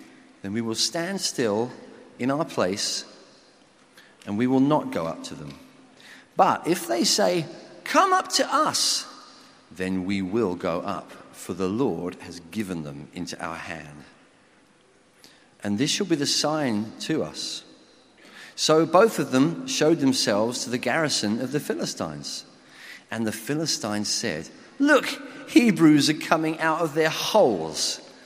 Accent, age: British, 40-59